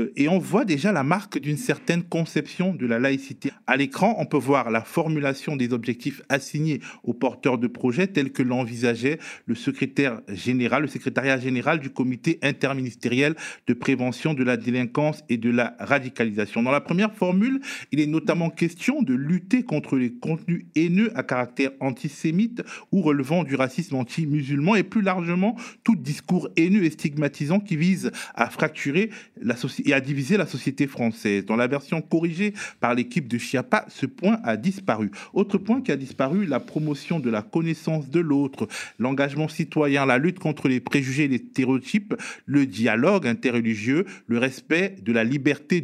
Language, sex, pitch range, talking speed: French, male, 125-170 Hz, 170 wpm